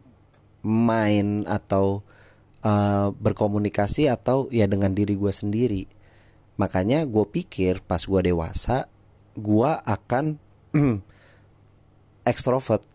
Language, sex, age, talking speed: Indonesian, male, 30-49, 90 wpm